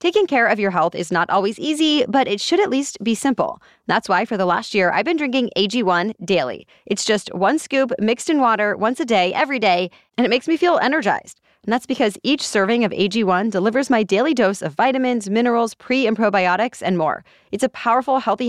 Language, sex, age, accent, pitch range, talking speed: English, female, 20-39, American, 200-265 Hz, 220 wpm